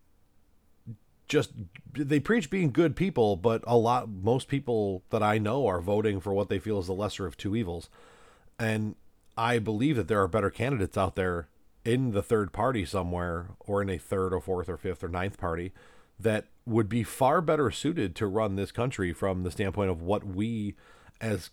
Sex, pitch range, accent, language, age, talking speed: male, 95-125 Hz, American, English, 40-59, 190 wpm